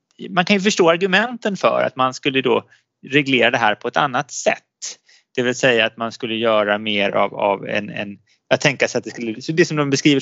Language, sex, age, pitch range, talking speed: Swedish, male, 20-39, 115-160 Hz, 235 wpm